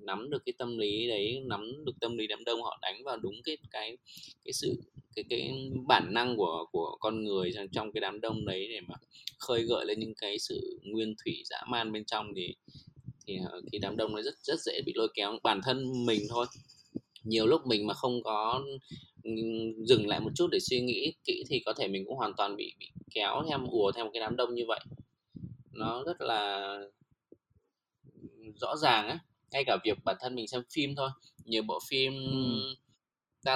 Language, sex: Vietnamese, male